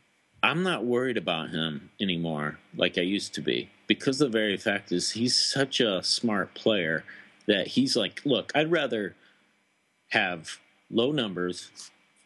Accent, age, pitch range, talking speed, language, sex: American, 40-59, 95-115 Hz, 145 wpm, English, male